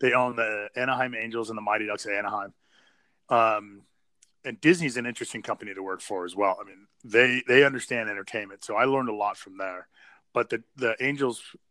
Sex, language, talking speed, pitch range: male, English, 200 wpm, 110-145 Hz